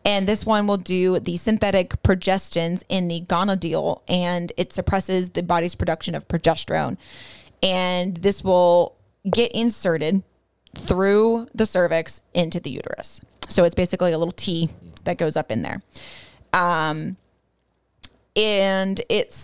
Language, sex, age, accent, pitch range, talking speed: English, female, 20-39, American, 175-205 Hz, 135 wpm